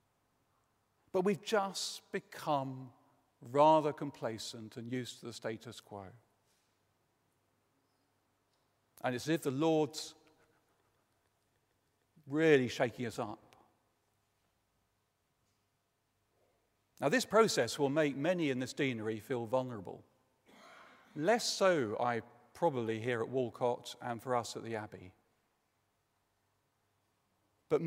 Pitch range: 115-155 Hz